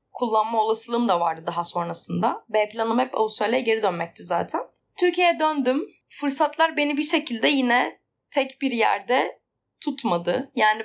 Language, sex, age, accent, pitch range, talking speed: Turkish, female, 10-29, native, 225-285 Hz, 140 wpm